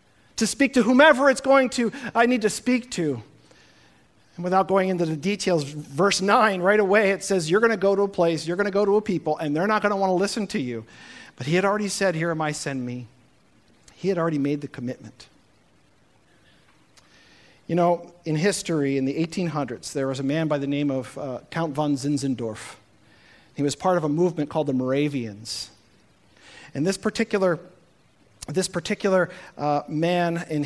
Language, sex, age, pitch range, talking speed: English, male, 50-69, 150-210 Hz, 195 wpm